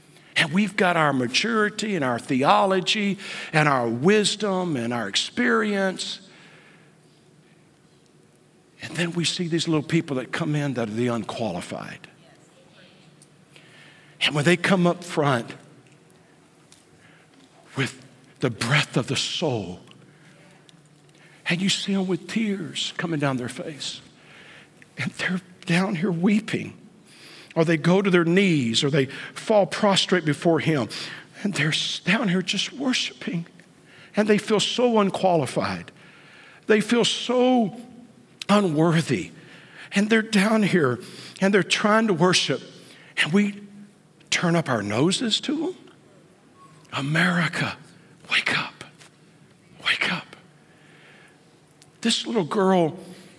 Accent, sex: American, male